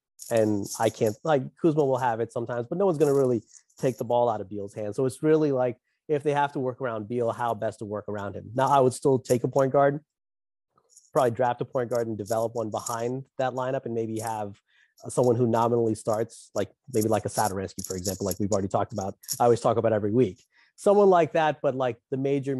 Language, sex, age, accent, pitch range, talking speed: English, male, 30-49, American, 110-135 Hz, 240 wpm